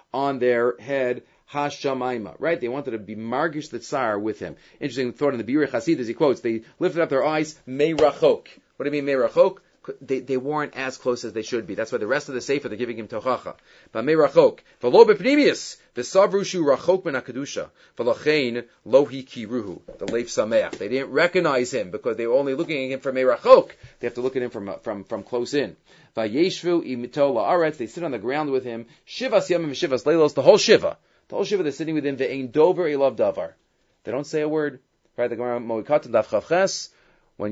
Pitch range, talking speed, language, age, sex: 125-170 Hz, 210 wpm, English, 40-59, male